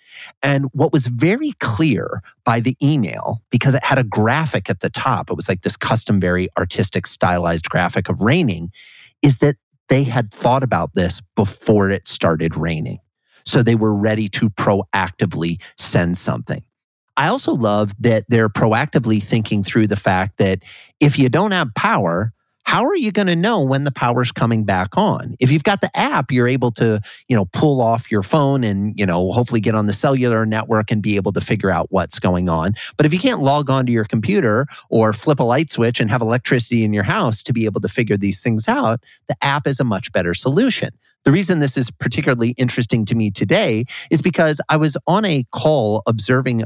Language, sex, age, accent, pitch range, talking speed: English, male, 40-59, American, 105-140 Hz, 205 wpm